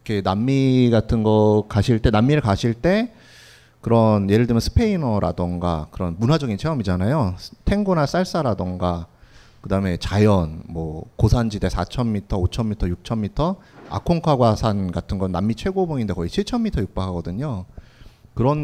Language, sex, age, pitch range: Korean, male, 30-49, 95-135 Hz